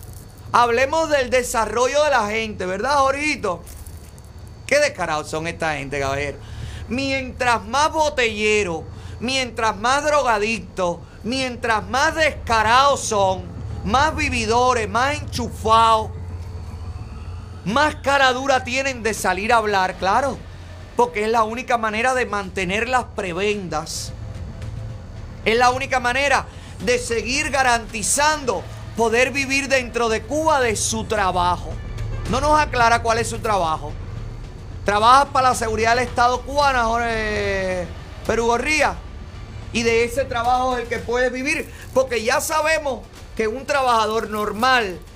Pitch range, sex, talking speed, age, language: 175-270 Hz, male, 120 wpm, 30-49, Spanish